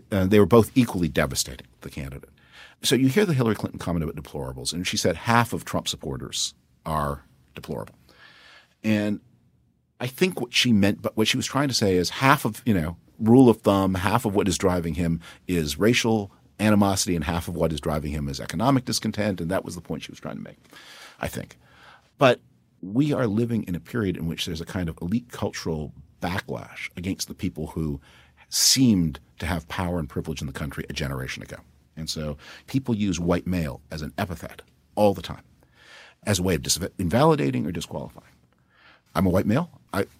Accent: American